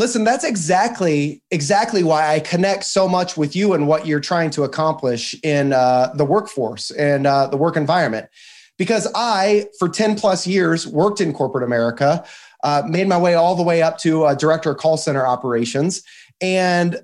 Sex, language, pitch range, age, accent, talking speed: male, English, 155-215 Hz, 30-49, American, 185 wpm